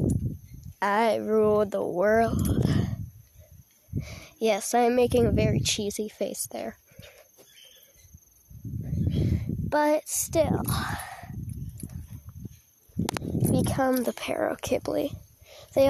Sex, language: female, English